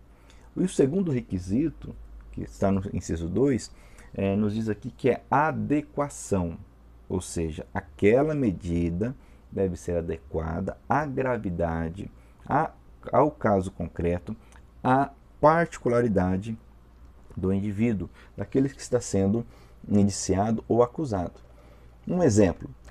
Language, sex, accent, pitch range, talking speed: Portuguese, male, Brazilian, 80-110 Hz, 105 wpm